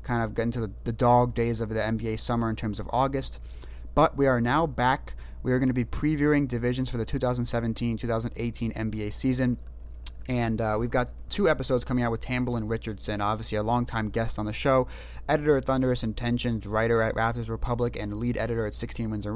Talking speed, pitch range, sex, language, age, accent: 205 wpm, 110-130 Hz, male, English, 30-49, American